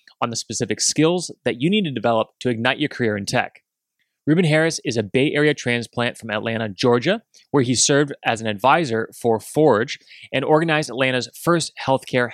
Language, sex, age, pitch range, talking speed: English, male, 30-49, 115-155 Hz, 185 wpm